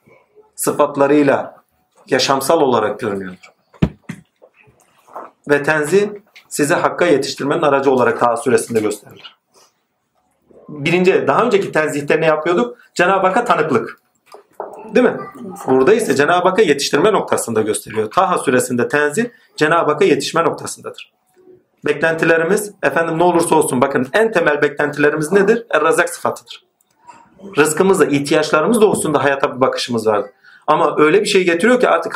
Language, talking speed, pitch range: Turkish, 125 wpm, 145-215 Hz